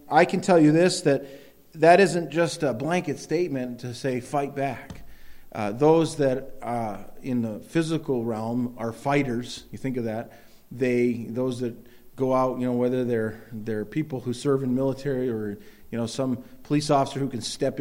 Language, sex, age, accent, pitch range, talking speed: English, male, 40-59, American, 115-140 Hz, 180 wpm